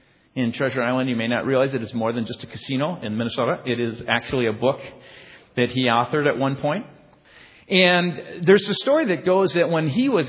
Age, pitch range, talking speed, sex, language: 50-69, 140-200 Hz, 220 wpm, male, English